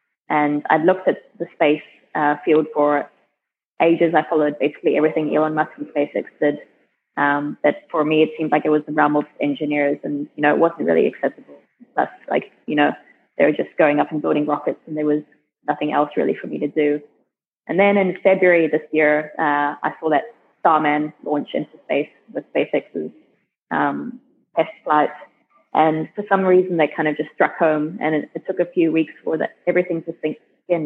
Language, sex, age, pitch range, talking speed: English, female, 20-39, 150-165 Hz, 200 wpm